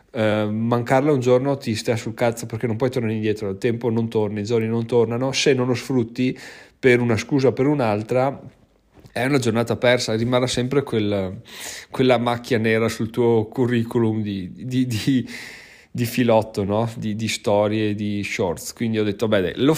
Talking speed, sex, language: 165 wpm, male, Italian